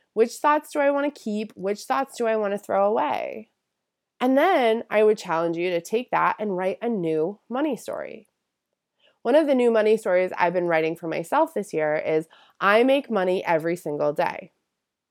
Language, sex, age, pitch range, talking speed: English, female, 20-39, 180-260 Hz, 200 wpm